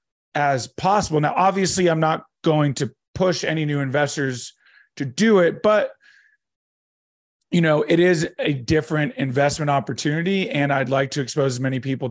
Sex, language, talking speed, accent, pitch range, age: male, English, 160 wpm, American, 135-165 Hz, 30-49